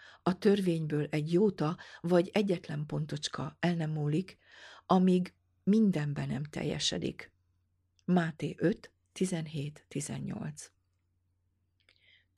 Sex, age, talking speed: female, 50-69, 80 wpm